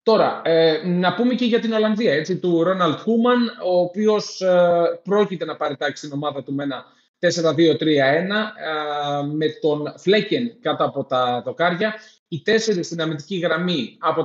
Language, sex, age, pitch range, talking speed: Greek, male, 30-49, 145-205 Hz, 160 wpm